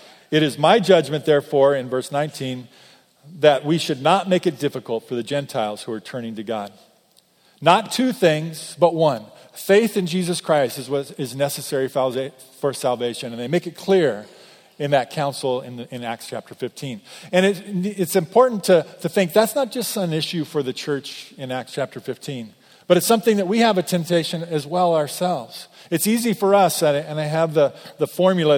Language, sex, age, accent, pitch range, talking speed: English, male, 40-59, American, 145-195 Hz, 185 wpm